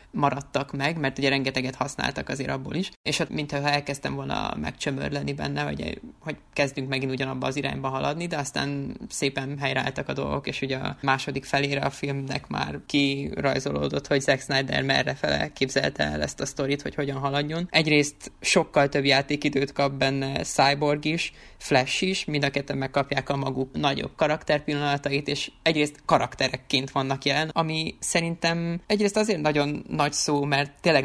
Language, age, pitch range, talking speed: Hungarian, 20-39, 135-145 Hz, 160 wpm